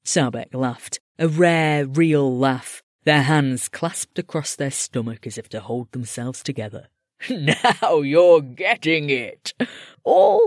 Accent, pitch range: British, 120-170 Hz